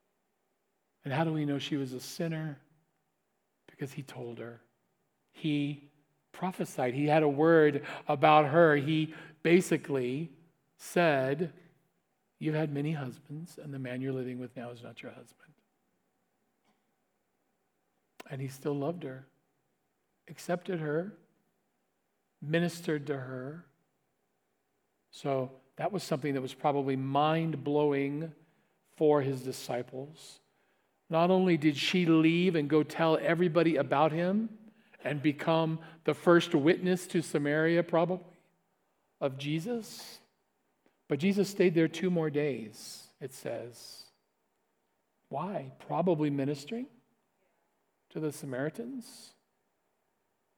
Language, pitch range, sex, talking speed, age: English, 140-170 Hz, male, 115 wpm, 50-69